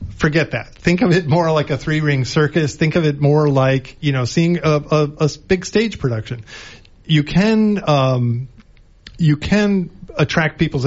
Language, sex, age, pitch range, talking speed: English, male, 40-59, 120-150 Hz, 165 wpm